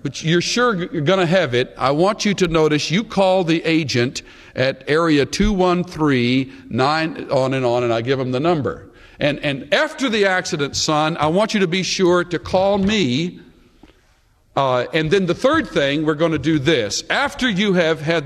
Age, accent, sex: 60-79, American, male